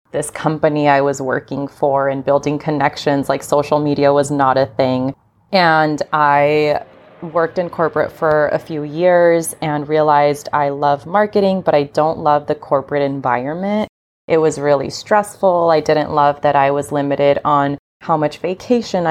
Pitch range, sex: 140-160 Hz, female